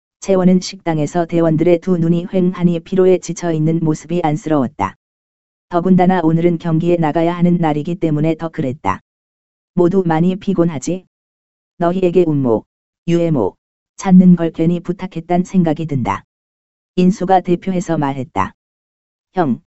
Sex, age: female, 20-39